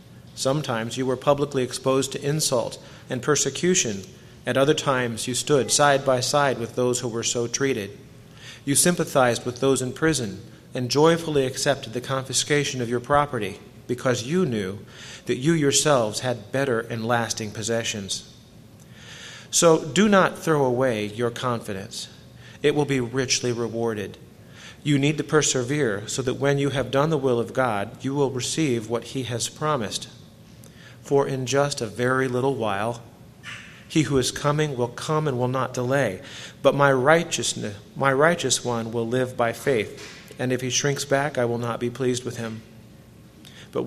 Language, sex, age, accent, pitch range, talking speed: English, male, 40-59, American, 120-140 Hz, 165 wpm